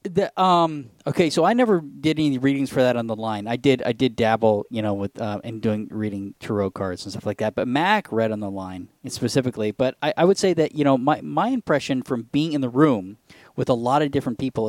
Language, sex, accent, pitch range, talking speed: English, male, American, 110-145 Hz, 250 wpm